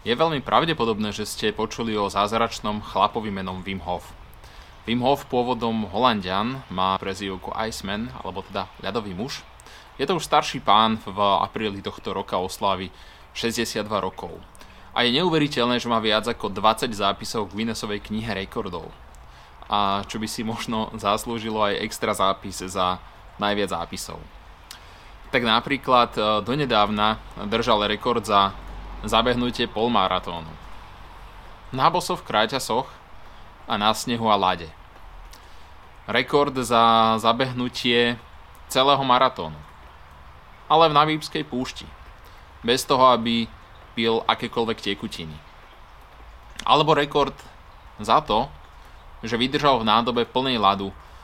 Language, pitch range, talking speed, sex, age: Slovak, 90-120 Hz, 120 wpm, male, 20-39